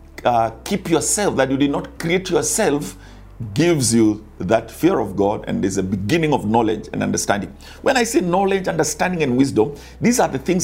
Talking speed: 190 wpm